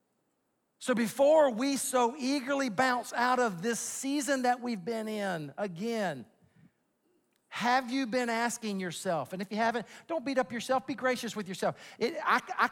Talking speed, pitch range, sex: 165 wpm, 145-230 Hz, male